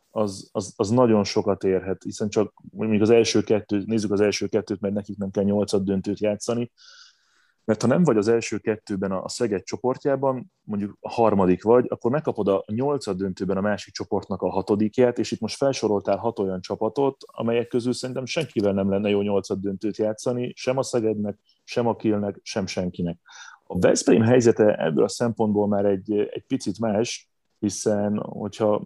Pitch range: 100-120 Hz